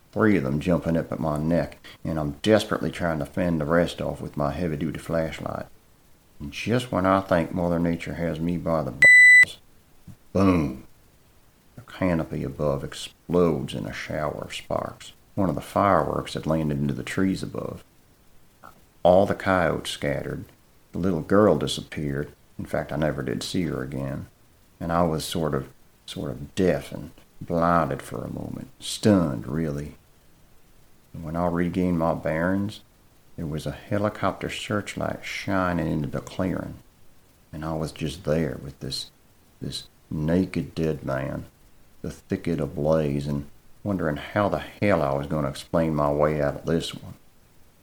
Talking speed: 160 wpm